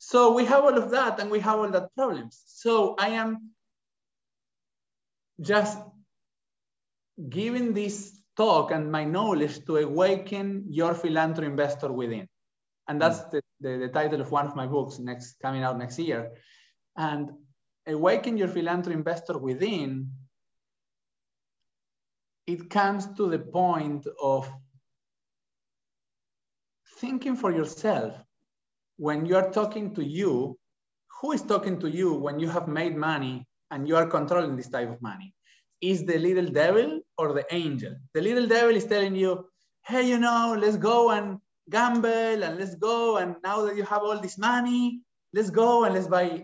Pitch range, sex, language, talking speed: 155-215 Hz, male, English, 155 wpm